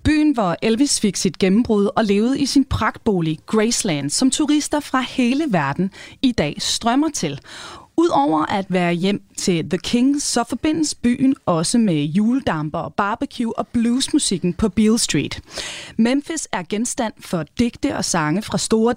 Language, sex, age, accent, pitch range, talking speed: Danish, female, 30-49, native, 180-255 Hz, 155 wpm